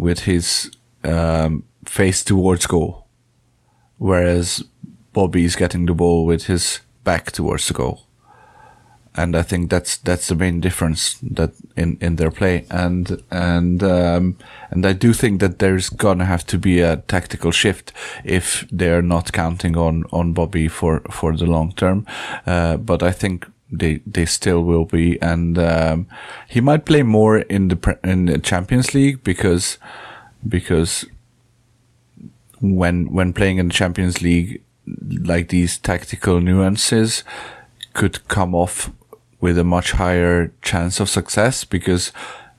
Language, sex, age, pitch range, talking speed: English, male, 30-49, 85-95 Hz, 150 wpm